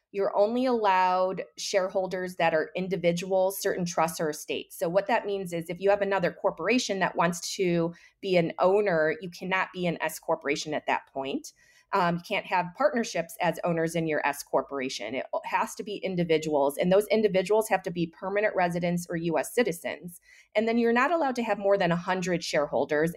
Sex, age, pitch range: female, 30-49, 170-220 Hz